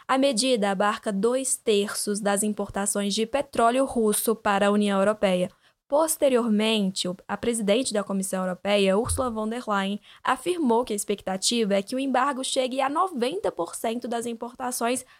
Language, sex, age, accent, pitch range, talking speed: Portuguese, female, 10-29, Brazilian, 215-265 Hz, 145 wpm